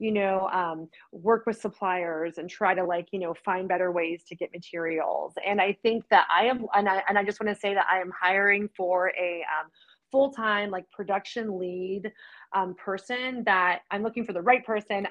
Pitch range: 185-235 Hz